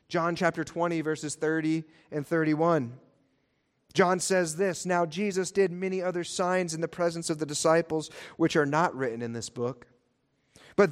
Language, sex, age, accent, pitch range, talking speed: English, male, 40-59, American, 135-175 Hz, 165 wpm